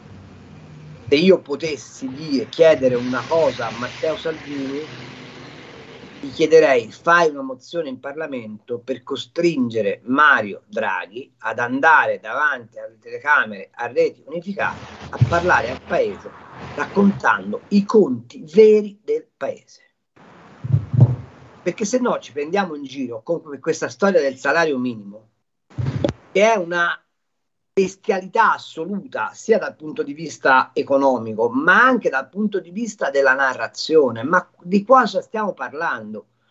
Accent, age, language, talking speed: native, 40-59, Italian, 125 wpm